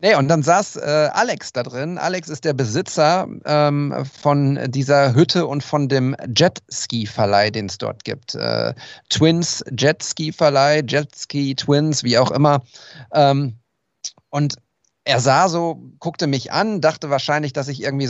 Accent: German